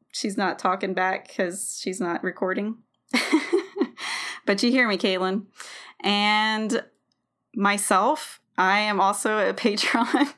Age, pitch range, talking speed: 20-39, 185-245 Hz, 115 wpm